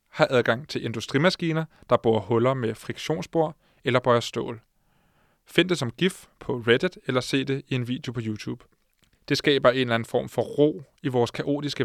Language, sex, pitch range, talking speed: Danish, male, 120-140 Hz, 185 wpm